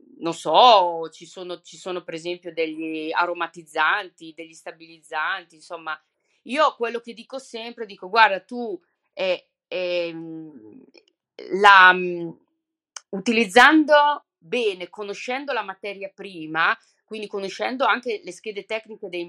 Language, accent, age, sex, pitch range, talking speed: Italian, native, 30-49, female, 175-235 Hz, 115 wpm